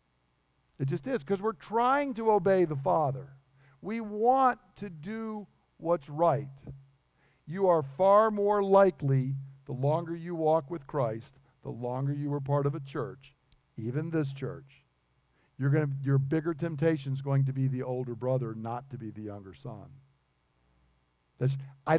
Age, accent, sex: 50-69, American, male